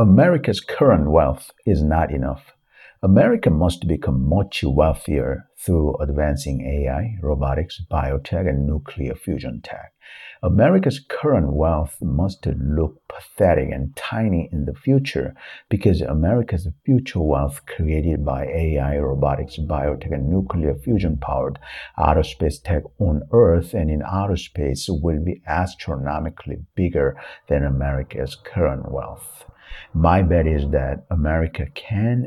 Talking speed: 125 wpm